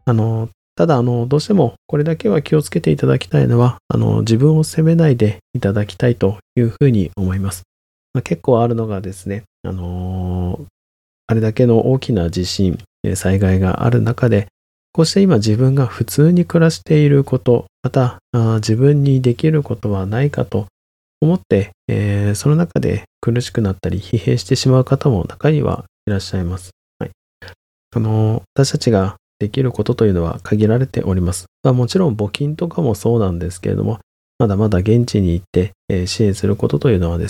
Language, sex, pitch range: Japanese, male, 95-130 Hz